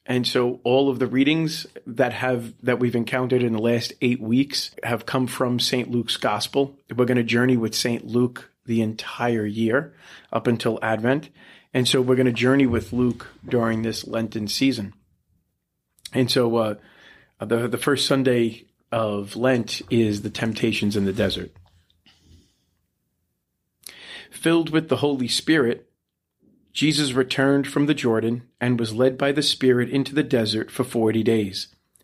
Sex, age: male, 40-59